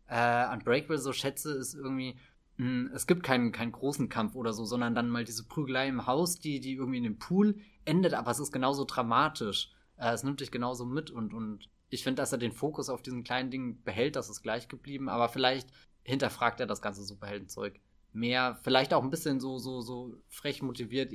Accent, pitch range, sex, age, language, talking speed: German, 115-140 Hz, male, 20-39, German, 210 wpm